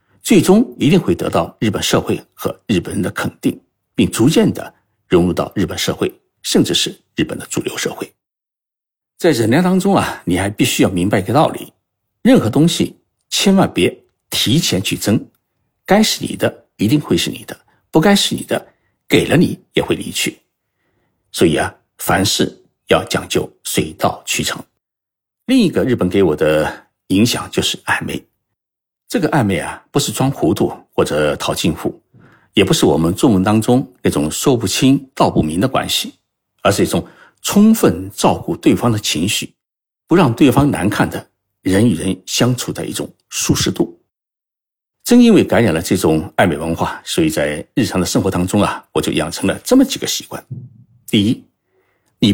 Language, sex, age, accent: Chinese, male, 60-79, native